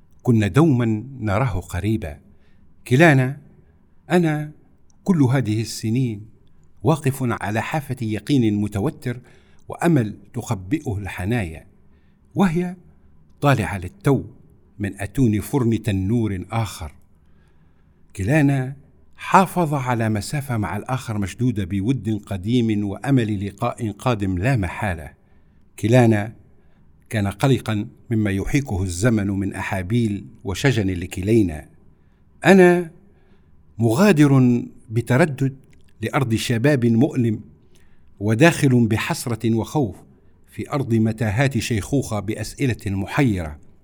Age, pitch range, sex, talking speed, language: 60-79, 95-135 Hz, male, 90 wpm, Arabic